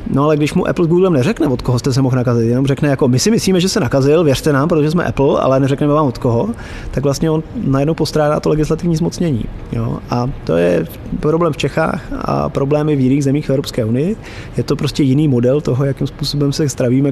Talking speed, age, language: 230 wpm, 30-49, Czech